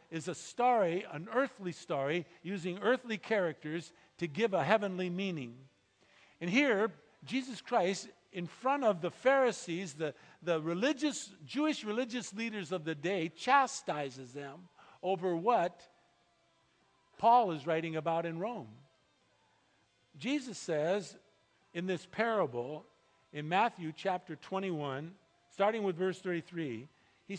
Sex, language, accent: male, English, American